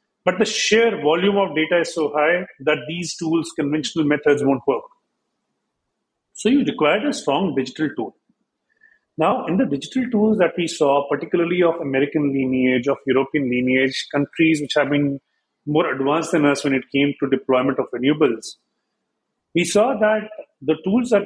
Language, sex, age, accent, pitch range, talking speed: English, male, 40-59, Indian, 145-190 Hz, 165 wpm